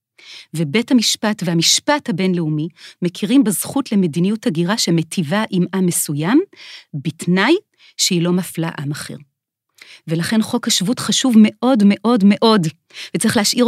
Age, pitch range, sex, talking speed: 30-49, 170-225 Hz, female, 120 wpm